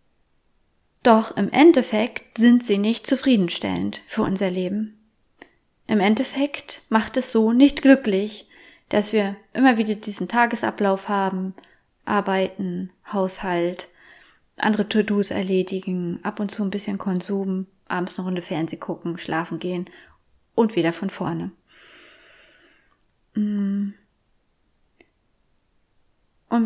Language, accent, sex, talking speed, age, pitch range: German, German, female, 110 wpm, 30-49, 195-250 Hz